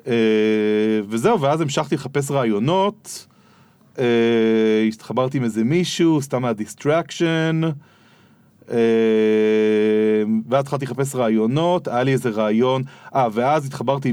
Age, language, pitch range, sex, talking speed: 30-49, Hebrew, 115-150 Hz, male, 105 wpm